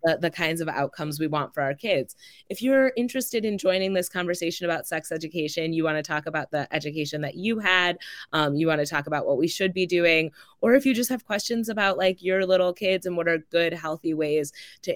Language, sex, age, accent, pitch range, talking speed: English, female, 20-39, American, 150-185 Hz, 235 wpm